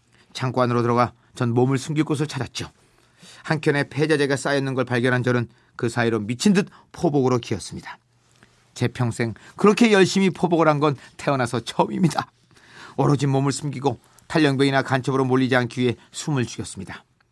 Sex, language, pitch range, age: male, Korean, 115-145 Hz, 40-59